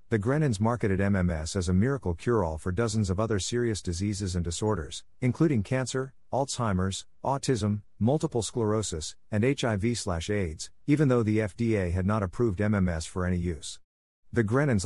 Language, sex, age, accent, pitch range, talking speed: English, male, 50-69, American, 90-115 Hz, 150 wpm